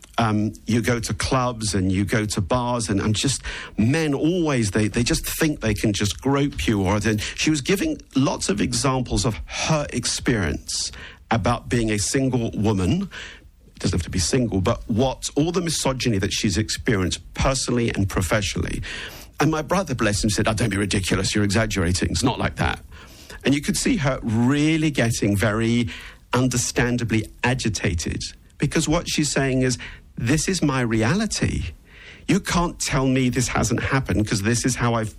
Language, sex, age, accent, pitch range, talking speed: English, male, 50-69, British, 100-135 Hz, 175 wpm